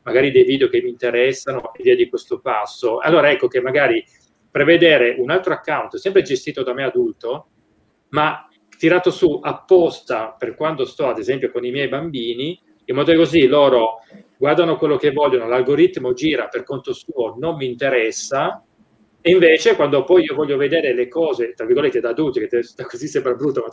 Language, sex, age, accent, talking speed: Italian, male, 30-49, native, 180 wpm